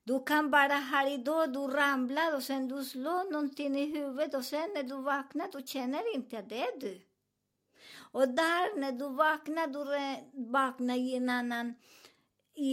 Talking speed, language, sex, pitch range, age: 175 wpm, Swedish, male, 220-275 Hz, 50-69